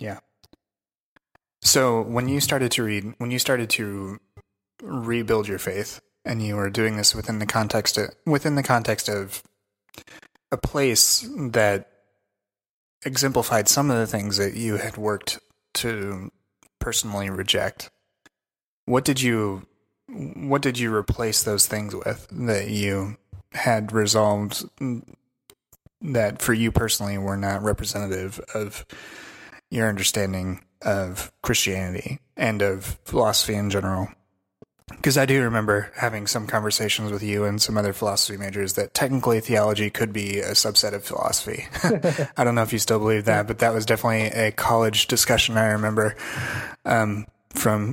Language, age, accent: English, 30-49, American